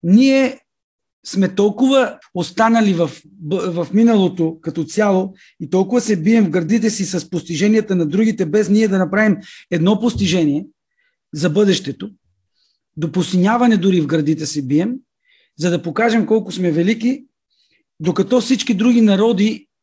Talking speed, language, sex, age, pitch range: 135 wpm, Bulgarian, male, 40-59, 175-225 Hz